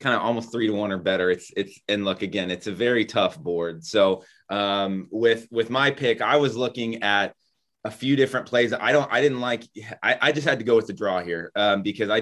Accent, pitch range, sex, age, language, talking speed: American, 95-115 Hz, male, 20-39, English, 245 wpm